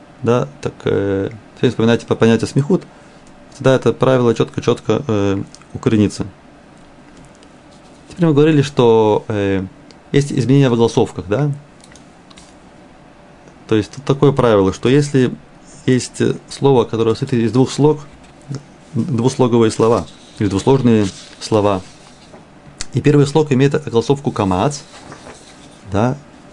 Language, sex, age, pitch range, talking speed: Russian, male, 30-49, 110-140 Hz, 110 wpm